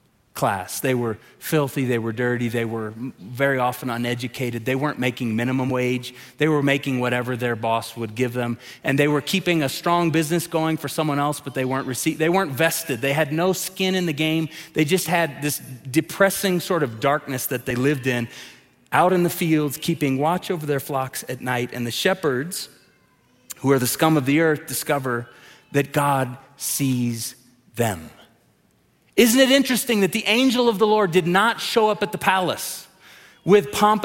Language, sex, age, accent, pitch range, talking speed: English, male, 30-49, American, 130-190 Hz, 190 wpm